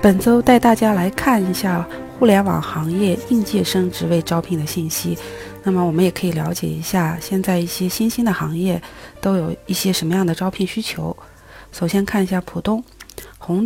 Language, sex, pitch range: Chinese, female, 175-210 Hz